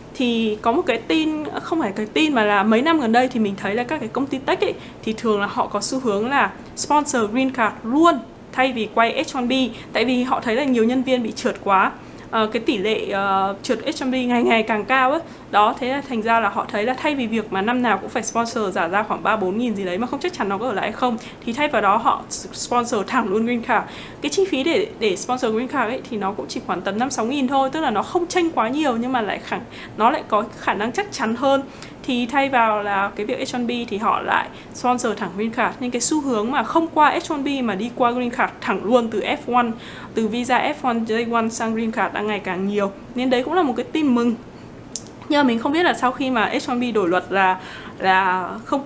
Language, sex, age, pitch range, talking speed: Vietnamese, female, 20-39, 215-265 Hz, 260 wpm